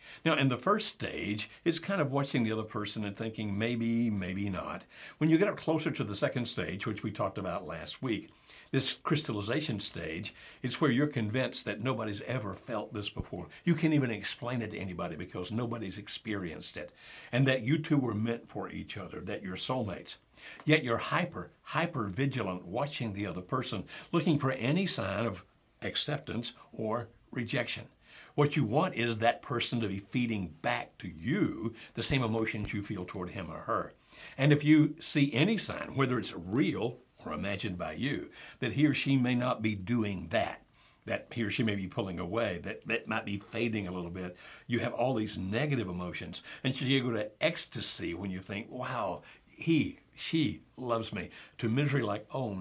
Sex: male